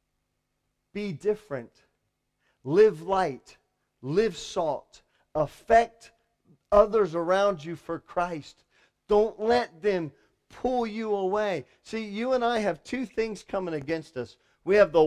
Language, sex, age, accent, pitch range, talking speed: English, male, 40-59, American, 130-205 Hz, 125 wpm